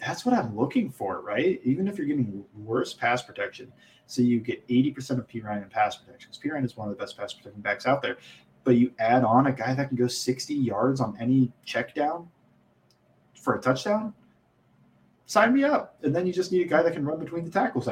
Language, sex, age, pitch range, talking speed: English, male, 20-39, 110-135 Hz, 230 wpm